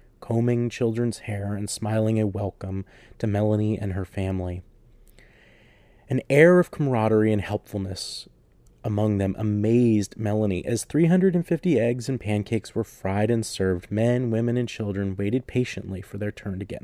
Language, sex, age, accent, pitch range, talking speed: English, male, 30-49, American, 100-125 Hz, 150 wpm